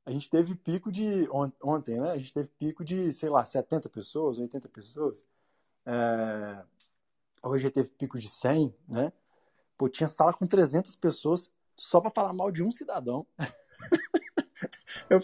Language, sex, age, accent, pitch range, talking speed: Portuguese, male, 20-39, Brazilian, 125-180 Hz, 155 wpm